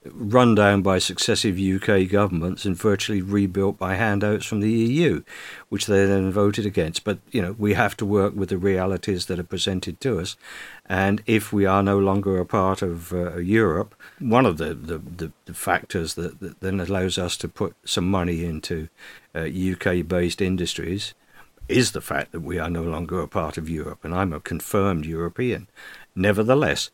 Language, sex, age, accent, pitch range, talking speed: English, male, 50-69, British, 90-105 Hz, 180 wpm